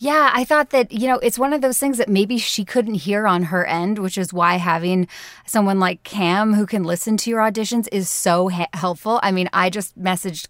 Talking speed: 235 wpm